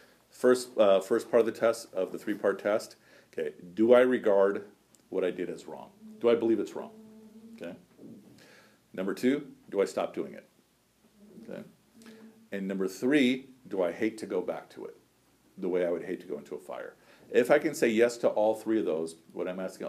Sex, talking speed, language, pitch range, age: male, 205 wpm, English, 95-120 Hz, 50-69